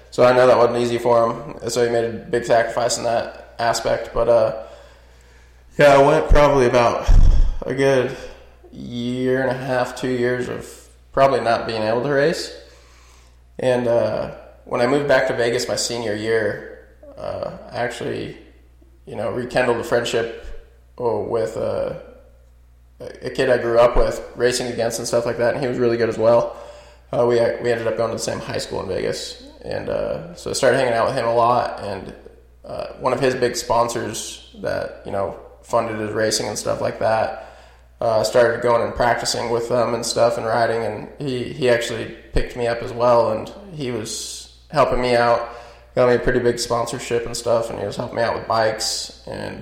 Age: 20-39